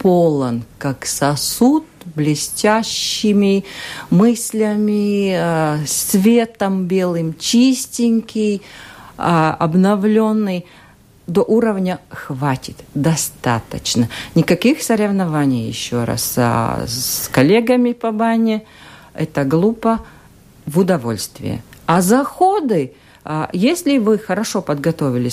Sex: female